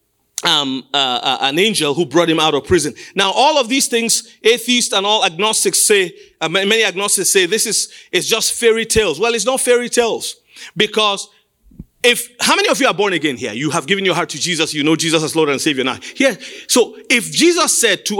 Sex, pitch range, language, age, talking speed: male, 155-255 Hz, English, 40-59, 220 wpm